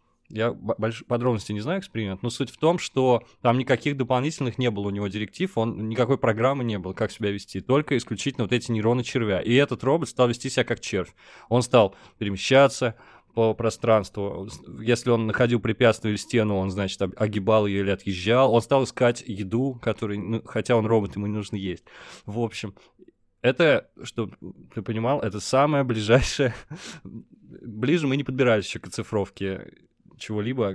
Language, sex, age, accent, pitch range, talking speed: Russian, male, 20-39, native, 100-125 Hz, 170 wpm